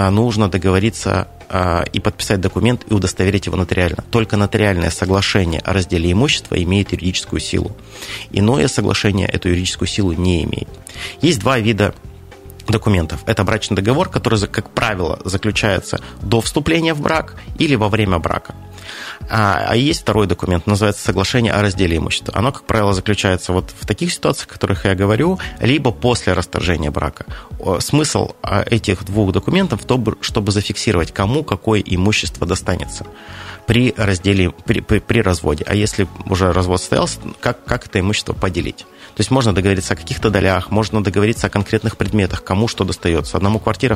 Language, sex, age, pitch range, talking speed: Russian, male, 30-49, 90-110 Hz, 155 wpm